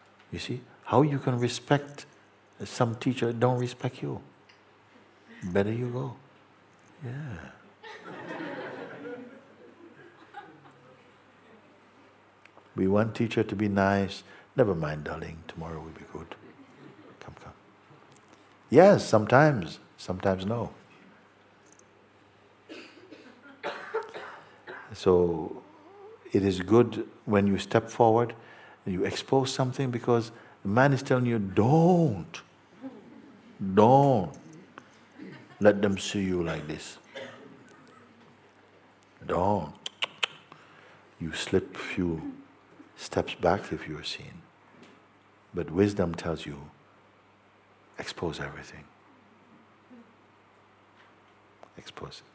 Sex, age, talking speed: male, 60-79, 90 wpm